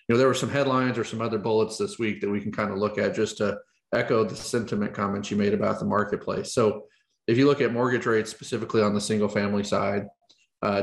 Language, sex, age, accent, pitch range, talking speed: English, male, 40-59, American, 105-125 Hz, 245 wpm